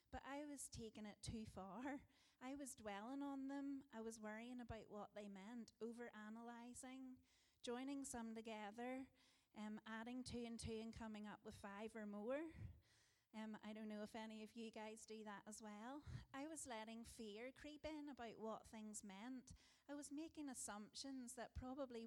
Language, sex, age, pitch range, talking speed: English, female, 30-49, 220-270 Hz, 175 wpm